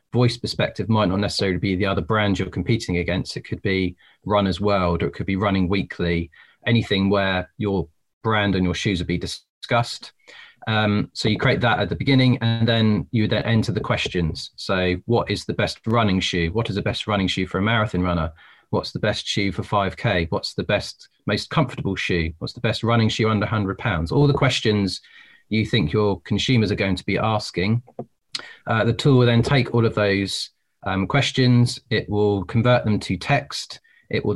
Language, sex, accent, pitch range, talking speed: English, male, British, 95-115 Hz, 205 wpm